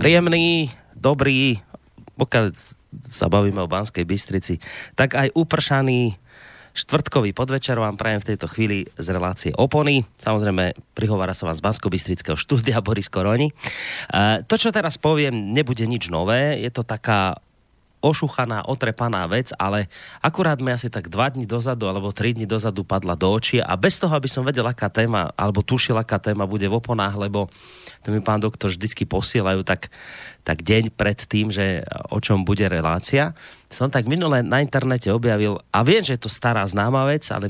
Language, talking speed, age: Slovak, 170 wpm, 30-49